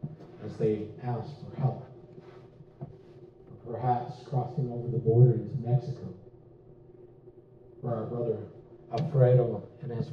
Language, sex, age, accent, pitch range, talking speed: English, male, 40-59, American, 125-150 Hz, 105 wpm